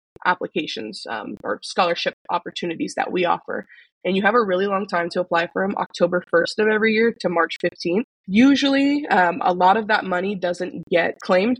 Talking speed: 190 wpm